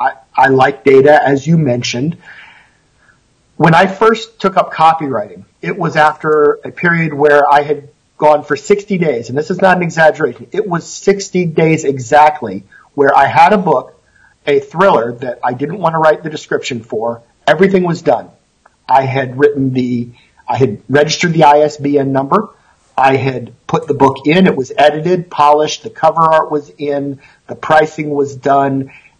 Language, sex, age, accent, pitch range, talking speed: English, male, 50-69, American, 140-170 Hz, 175 wpm